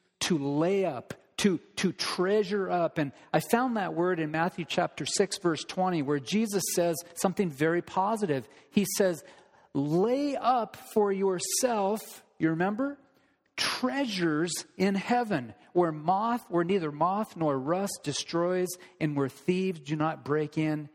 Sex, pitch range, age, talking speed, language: male, 140-185 Hz, 40-59, 145 wpm, English